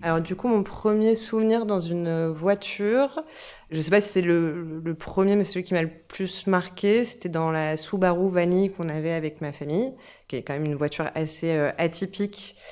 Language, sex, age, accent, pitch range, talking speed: French, female, 20-39, French, 160-185 Hz, 205 wpm